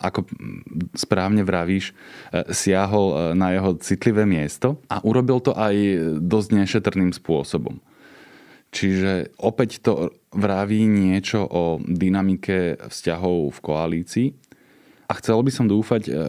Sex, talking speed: male, 110 wpm